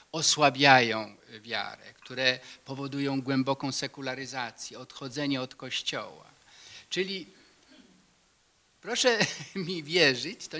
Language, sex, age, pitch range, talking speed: Polish, male, 50-69, 135-200 Hz, 80 wpm